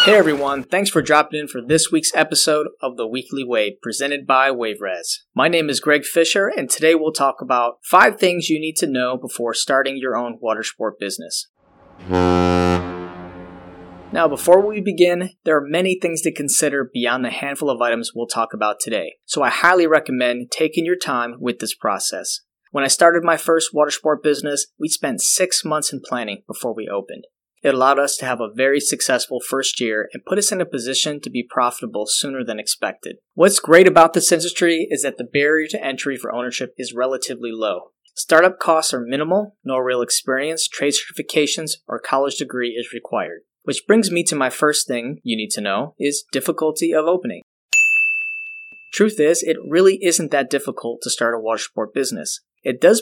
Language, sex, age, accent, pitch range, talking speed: English, male, 30-49, American, 125-165 Hz, 190 wpm